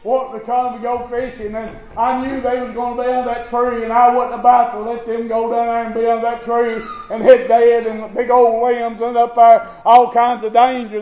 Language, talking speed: English, 255 wpm